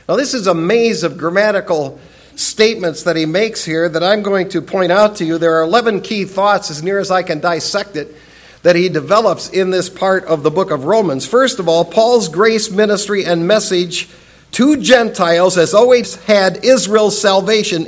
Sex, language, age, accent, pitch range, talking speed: male, English, 50-69, American, 175-230 Hz, 195 wpm